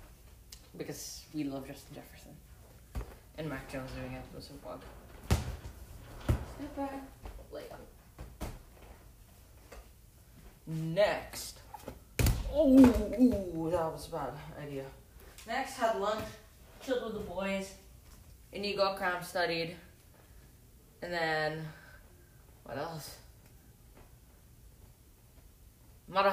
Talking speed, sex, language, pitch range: 90 wpm, female, English, 145-195 Hz